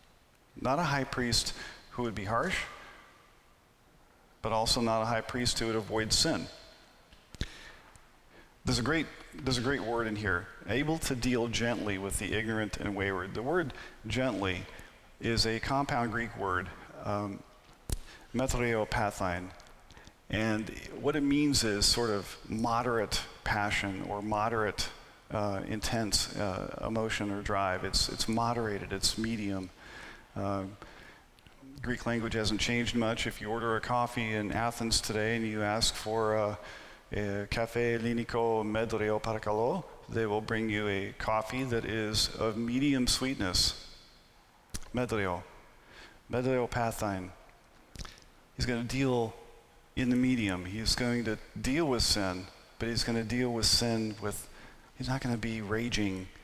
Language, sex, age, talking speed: English, male, 40-59, 140 wpm